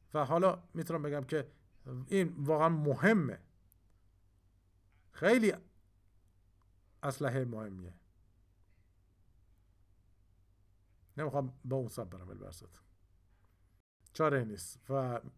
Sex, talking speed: male, 80 wpm